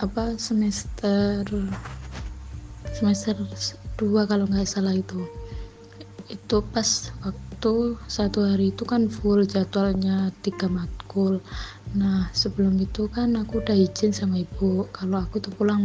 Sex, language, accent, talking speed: female, Indonesian, native, 120 wpm